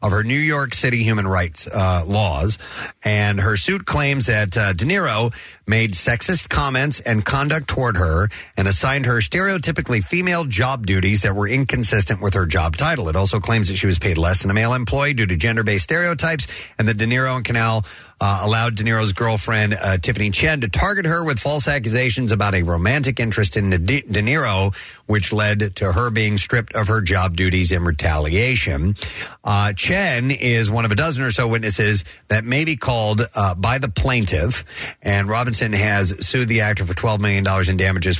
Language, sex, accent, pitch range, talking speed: English, male, American, 95-125 Hz, 195 wpm